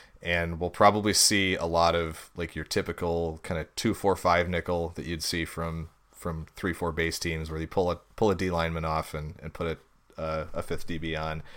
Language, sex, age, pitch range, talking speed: English, male, 30-49, 80-95 Hz, 220 wpm